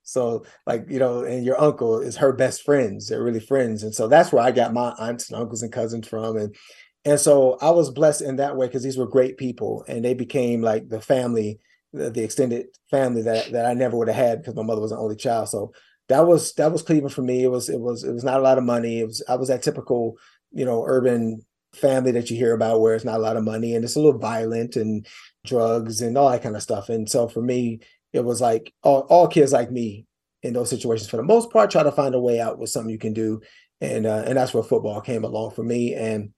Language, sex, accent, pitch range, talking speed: English, male, American, 115-130 Hz, 260 wpm